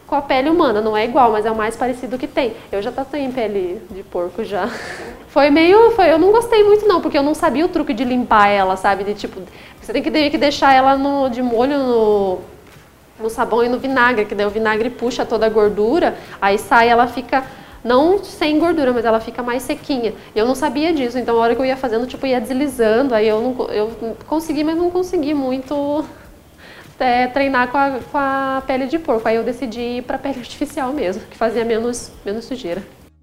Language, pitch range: Portuguese, 210-275 Hz